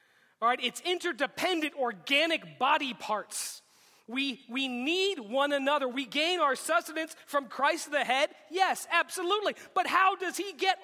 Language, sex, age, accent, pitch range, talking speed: English, male, 30-49, American, 240-340 Hz, 150 wpm